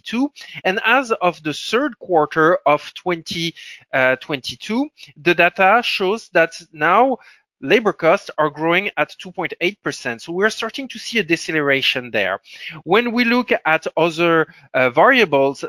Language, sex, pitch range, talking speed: English, male, 150-210 Hz, 130 wpm